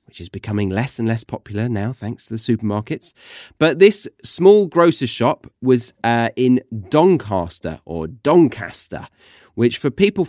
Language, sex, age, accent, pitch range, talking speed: English, male, 30-49, British, 110-130 Hz, 150 wpm